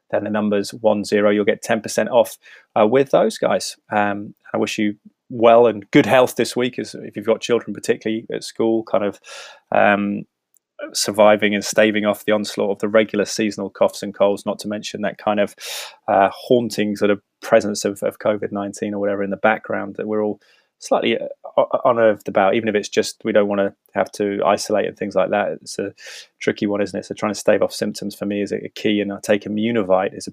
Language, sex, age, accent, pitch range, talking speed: English, male, 20-39, British, 100-110 Hz, 220 wpm